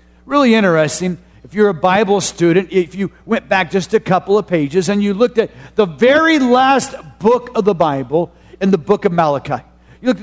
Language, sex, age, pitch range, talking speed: English, male, 50-69, 175-255 Hz, 200 wpm